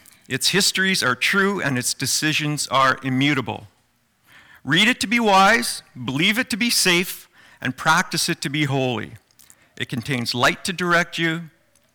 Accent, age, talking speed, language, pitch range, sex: American, 50-69, 155 wpm, English, 125-185 Hz, male